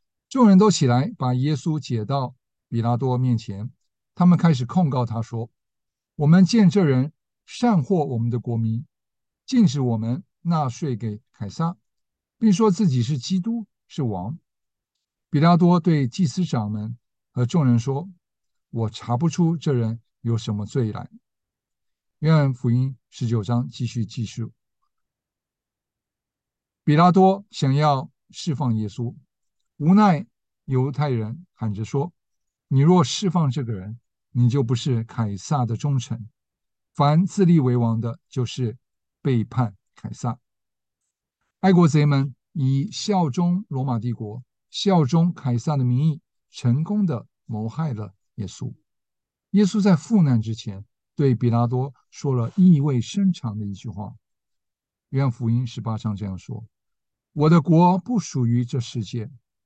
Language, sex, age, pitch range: English, male, 60-79, 115-165 Hz